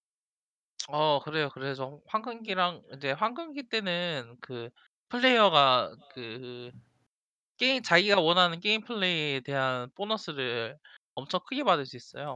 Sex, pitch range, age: male, 130-190 Hz, 20-39